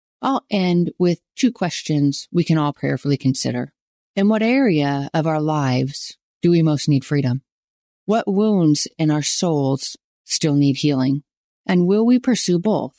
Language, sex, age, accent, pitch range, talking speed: English, female, 40-59, American, 150-210 Hz, 155 wpm